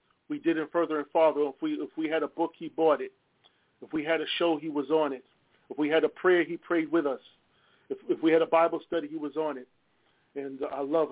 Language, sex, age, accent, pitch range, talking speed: English, male, 40-59, American, 135-195 Hz, 260 wpm